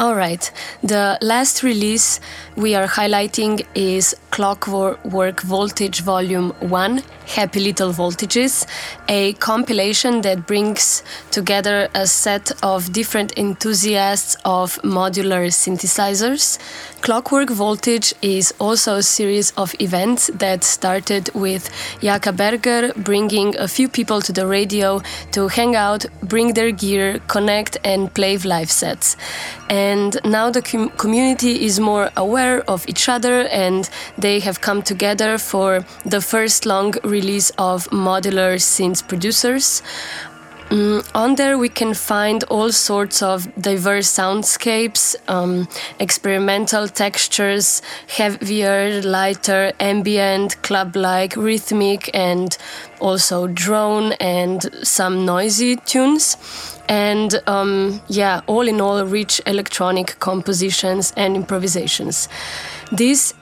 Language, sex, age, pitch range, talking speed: Hungarian, female, 20-39, 190-220 Hz, 115 wpm